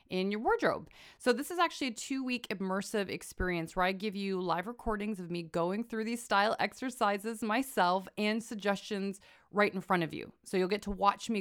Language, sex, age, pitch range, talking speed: English, female, 20-39, 180-225 Hz, 200 wpm